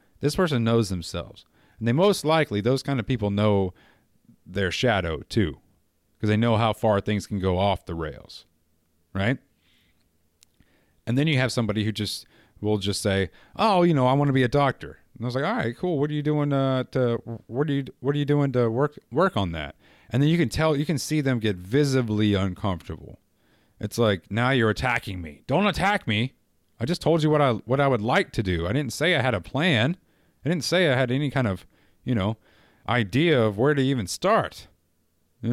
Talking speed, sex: 220 wpm, male